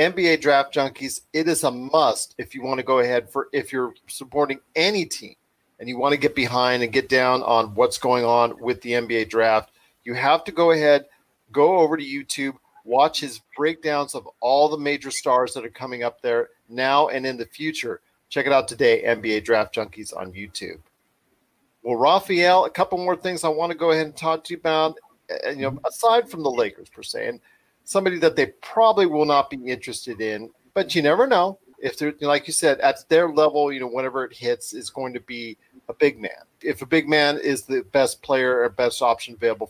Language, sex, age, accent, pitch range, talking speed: English, male, 40-59, American, 120-160 Hz, 215 wpm